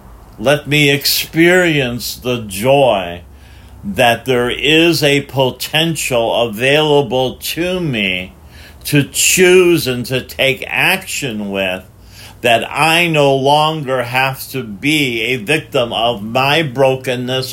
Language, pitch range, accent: English, 105-145 Hz, American